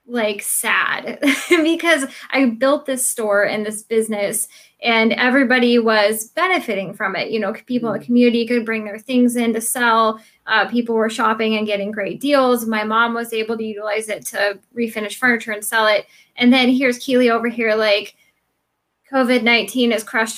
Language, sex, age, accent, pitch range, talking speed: English, female, 10-29, American, 220-255 Hz, 175 wpm